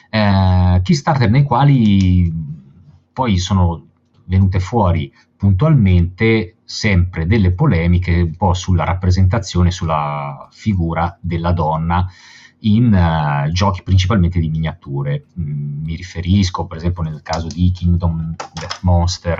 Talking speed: 115 wpm